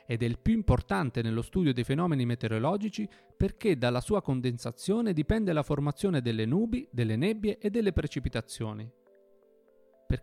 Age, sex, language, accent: 30-49, male, Italian, native